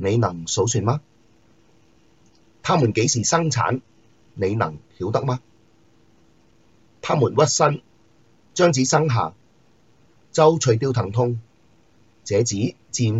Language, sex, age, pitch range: Chinese, male, 30-49, 110-130 Hz